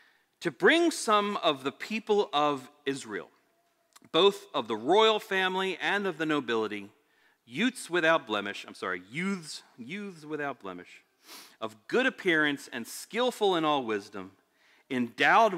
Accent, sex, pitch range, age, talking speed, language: American, male, 130-220 Hz, 40-59, 135 wpm, English